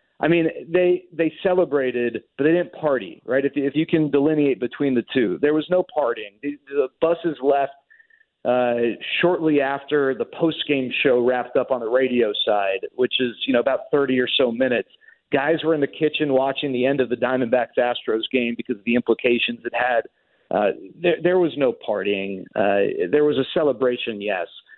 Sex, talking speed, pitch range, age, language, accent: male, 185 wpm, 125-165 Hz, 40-59, English, American